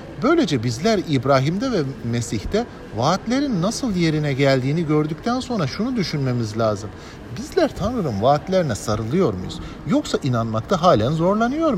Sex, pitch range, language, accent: male, 130-200 Hz, English, Turkish